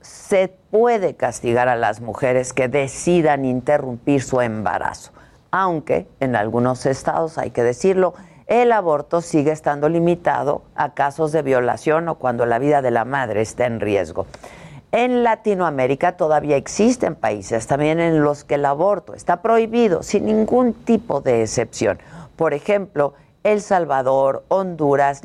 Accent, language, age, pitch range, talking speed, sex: Mexican, Spanish, 50-69, 135-190 Hz, 145 wpm, female